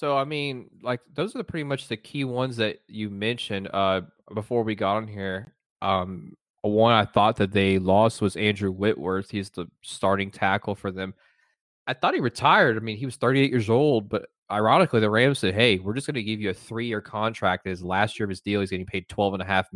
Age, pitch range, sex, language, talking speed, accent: 20-39, 100-120 Hz, male, English, 220 wpm, American